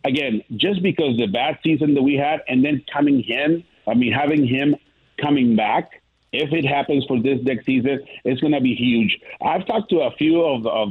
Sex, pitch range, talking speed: male, 130-160 Hz, 210 wpm